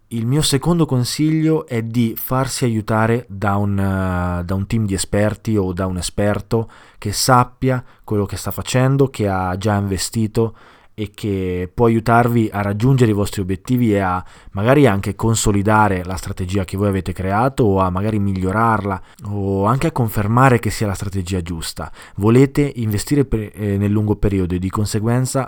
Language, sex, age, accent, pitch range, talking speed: Italian, male, 20-39, native, 100-125 Hz, 165 wpm